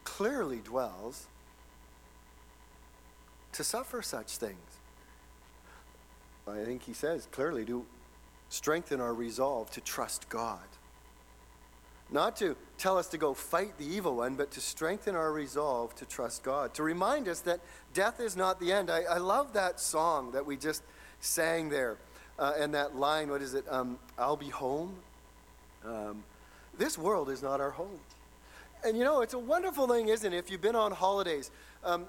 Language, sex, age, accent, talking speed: English, male, 40-59, American, 165 wpm